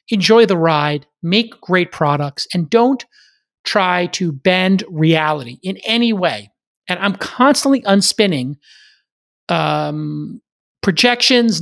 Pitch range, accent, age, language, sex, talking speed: 160-200 Hz, American, 40-59, English, male, 110 wpm